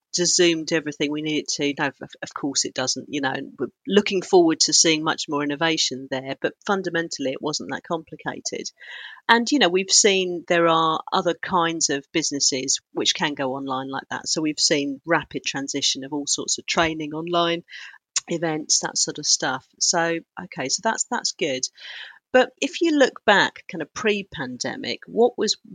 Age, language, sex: 40-59, English, female